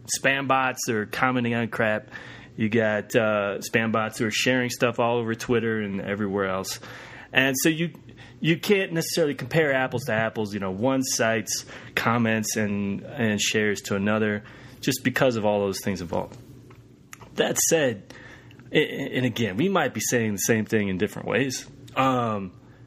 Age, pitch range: 30-49, 110-130 Hz